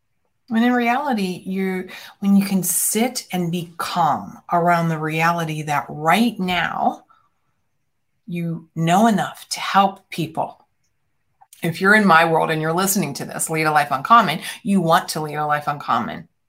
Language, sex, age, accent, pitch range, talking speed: English, female, 30-49, American, 160-195 Hz, 160 wpm